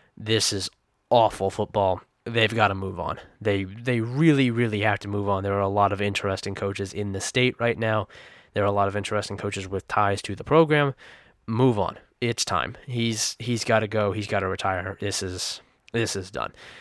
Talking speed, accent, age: 210 wpm, American, 20-39